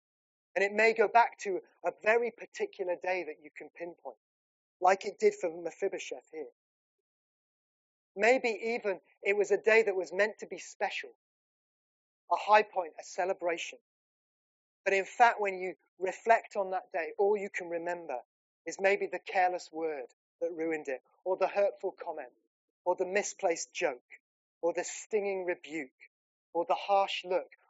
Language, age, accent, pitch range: English, 30-49, British, 165-205 Hz